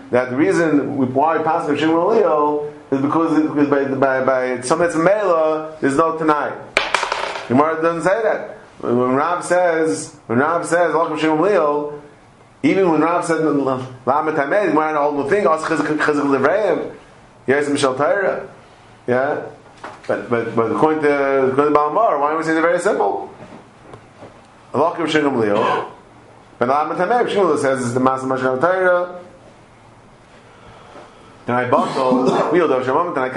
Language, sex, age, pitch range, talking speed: English, male, 30-49, 130-160 Hz, 115 wpm